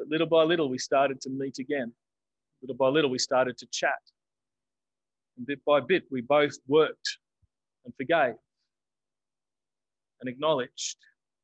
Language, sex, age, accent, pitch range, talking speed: English, male, 30-49, Australian, 130-160 Hz, 140 wpm